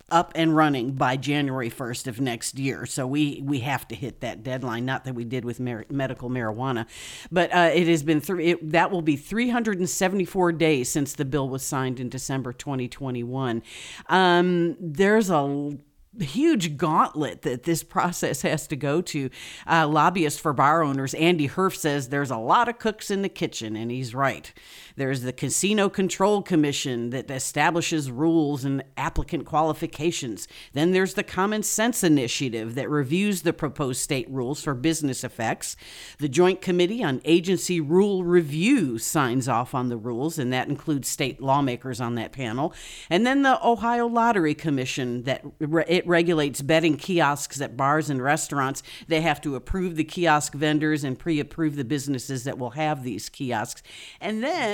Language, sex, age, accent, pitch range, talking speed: English, female, 50-69, American, 130-170 Hz, 170 wpm